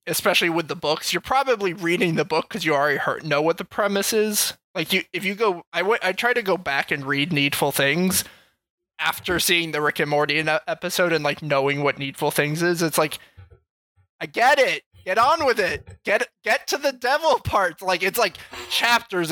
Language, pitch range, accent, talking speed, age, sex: English, 145-200 Hz, American, 210 wpm, 20-39, male